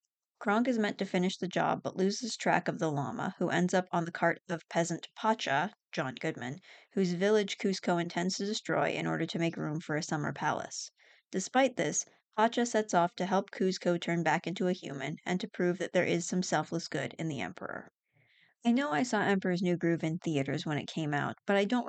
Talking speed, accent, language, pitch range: 220 wpm, American, English, 160-195 Hz